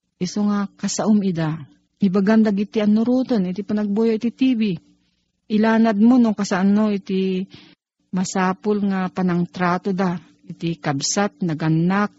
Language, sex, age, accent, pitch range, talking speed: Filipino, female, 40-59, native, 175-220 Hz, 120 wpm